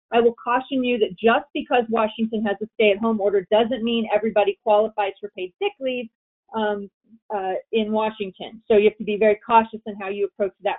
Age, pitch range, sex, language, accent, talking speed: 40-59, 190-230 Hz, female, English, American, 200 wpm